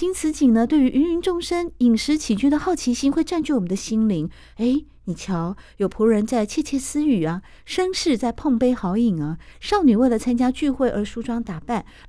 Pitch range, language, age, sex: 195-310 Hz, Chinese, 50-69, female